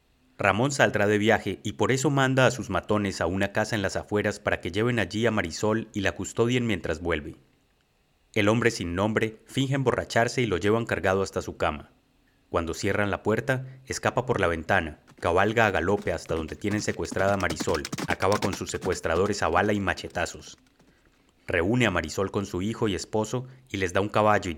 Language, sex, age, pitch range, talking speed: Spanish, male, 30-49, 90-115 Hz, 195 wpm